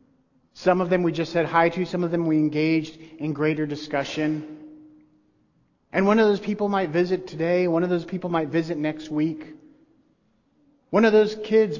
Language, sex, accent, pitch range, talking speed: English, male, American, 155-185 Hz, 185 wpm